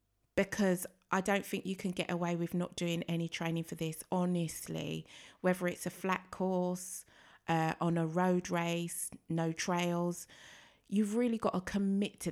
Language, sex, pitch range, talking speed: English, female, 170-200 Hz, 165 wpm